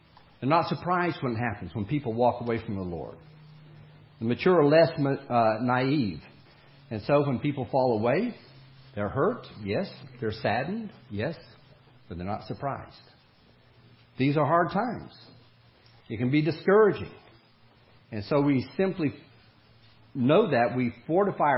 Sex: male